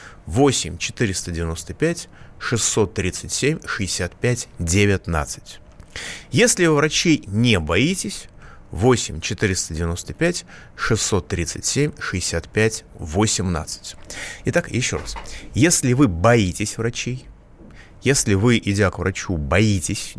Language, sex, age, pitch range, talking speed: Russian, male, 30-49, 90-135 Hz, 60 wpm